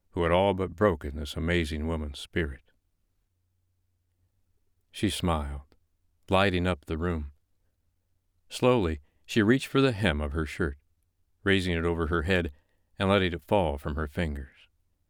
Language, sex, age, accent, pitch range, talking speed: English, male, 60-79, American, 80-90 Hz, 145 wpm